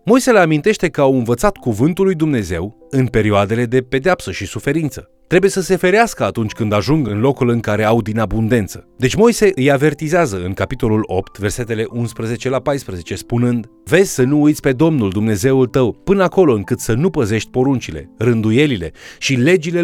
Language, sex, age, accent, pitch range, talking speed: Romanian, male, 30-49, native, 105-150 Hz, 180 wpm